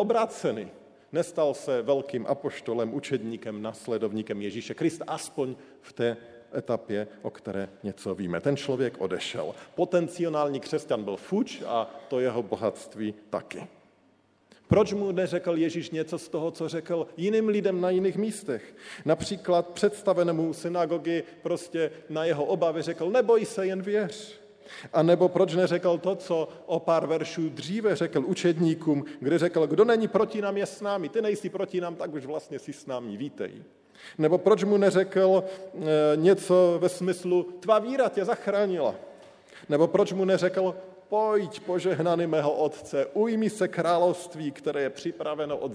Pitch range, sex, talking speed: 140-190 Hz, male, 150 wpm